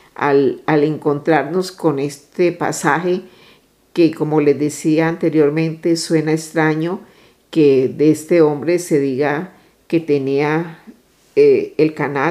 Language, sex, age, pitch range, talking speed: Spanish, female, 50-69, 150-180 Hz, 115 wpm